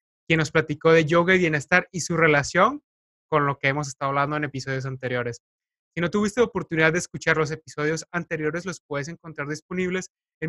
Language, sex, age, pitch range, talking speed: Spanish, male, 20-39, 150-190 Hz, 195 wpm